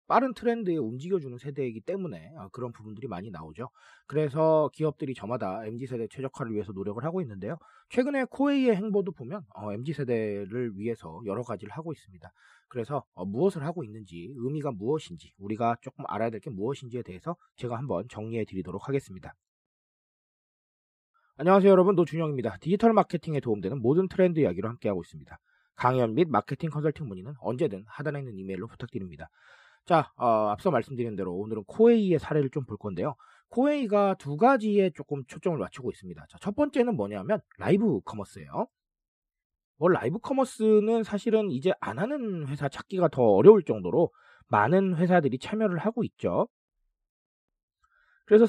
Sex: male